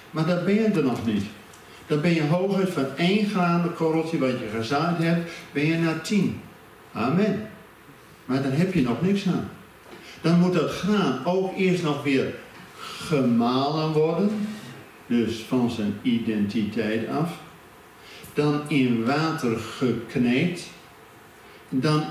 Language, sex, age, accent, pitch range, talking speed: Dutch, male, 50-69, Dutch, 135-205 Hz, 140 wpm